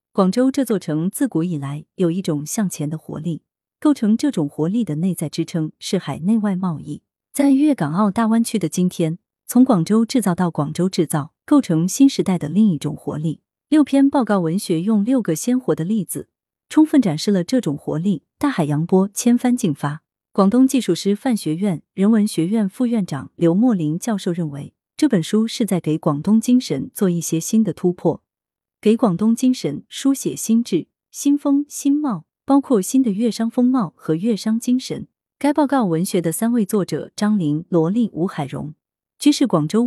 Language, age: Chinese, 30-49